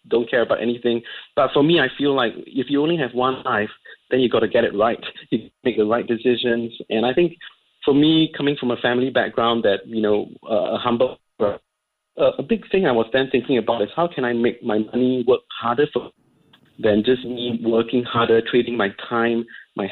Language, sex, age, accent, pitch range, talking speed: English, male, 30-49, Malaysian, 115-135 Hz, 215 wpm